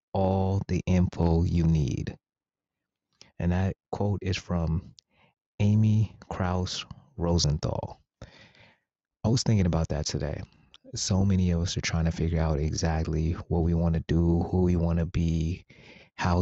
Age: 30-49